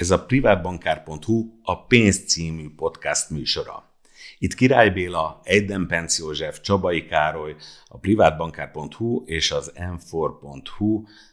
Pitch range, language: 100-115 Hz, Hungarian